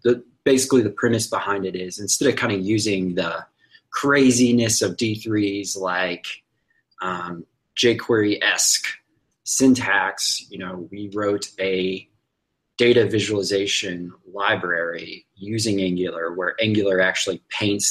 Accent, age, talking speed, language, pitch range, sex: American, 20-39, 110 wpm, English, 95-125 Hz, male